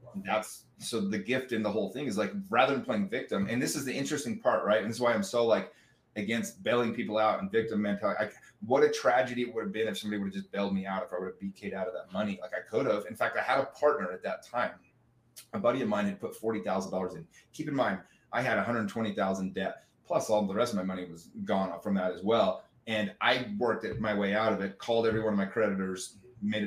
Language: English